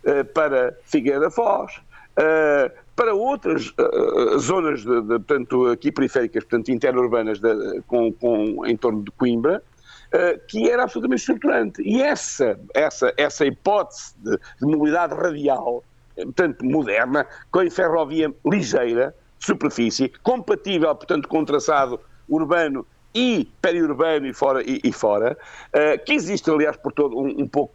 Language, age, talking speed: Portuguese, 60-79, 130 wpm